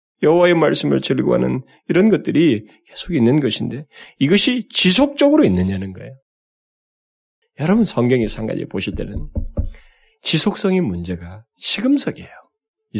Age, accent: 30-49, native